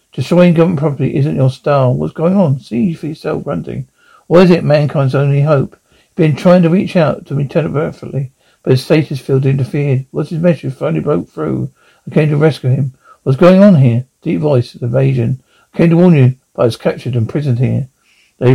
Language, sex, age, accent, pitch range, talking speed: English, male, 60-79, British, 130-165 Hz, 215 wpm